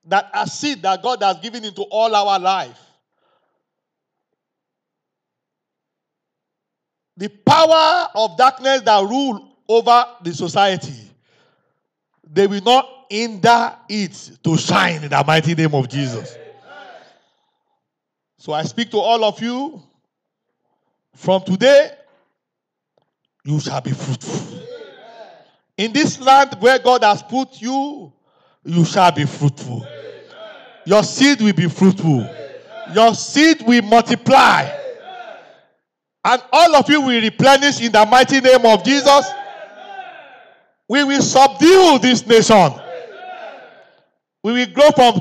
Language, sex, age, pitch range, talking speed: English, male, 50-69, 195-275 Hz, 115 wpm